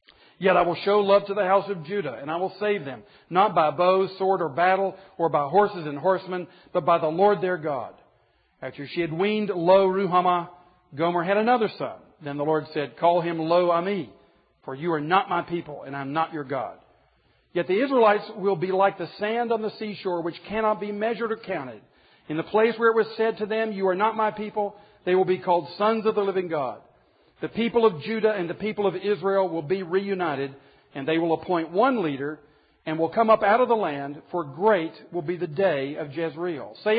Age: 50-69